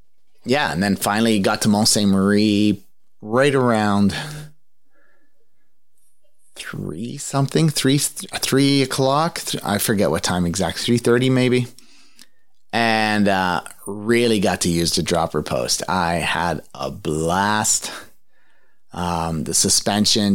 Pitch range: 90-115 Hz